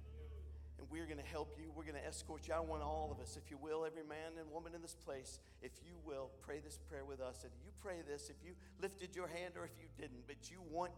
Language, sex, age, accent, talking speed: English, male, 50-69, American, 275 wpm